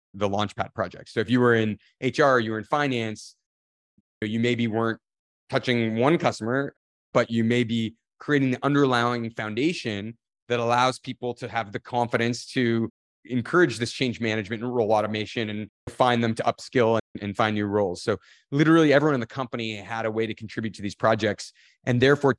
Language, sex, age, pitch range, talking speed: English, male, 30-49, 110-130 Hz, 180 wpm